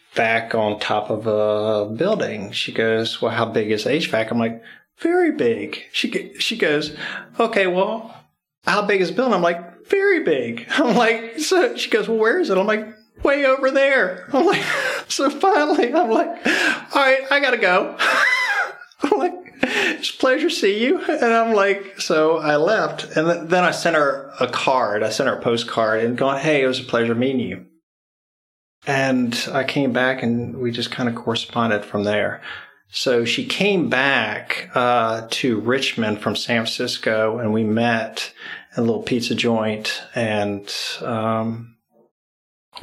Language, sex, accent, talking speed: English, male, American, 175 wpm